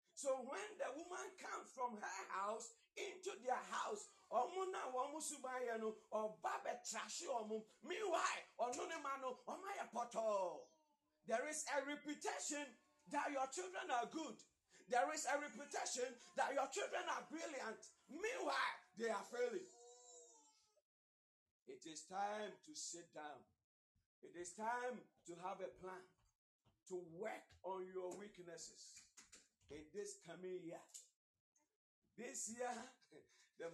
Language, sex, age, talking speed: English, male, 50-69, 105 wpm